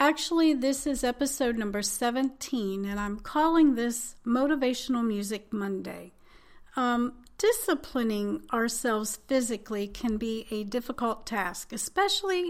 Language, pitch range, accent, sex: English, 210-270 Hz, American, female